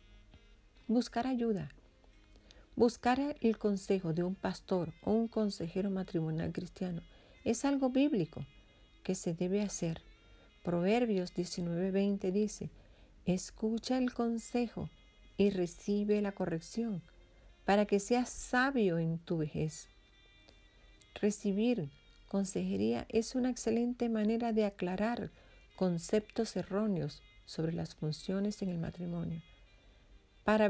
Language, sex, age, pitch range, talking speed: English, female, 40-59, 155-220 Hz, 105 wpm